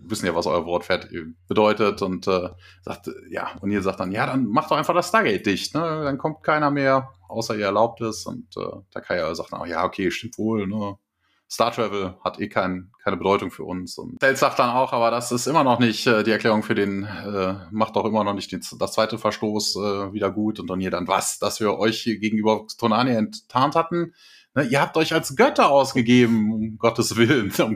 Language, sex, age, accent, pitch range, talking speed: German, male, 30-49, German, 105-135 Hz, 220 wpm